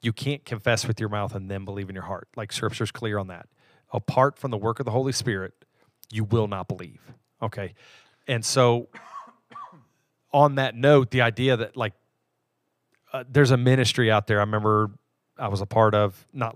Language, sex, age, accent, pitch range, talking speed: English, male, 40-59, American, 110-155 Hz, 190 wpm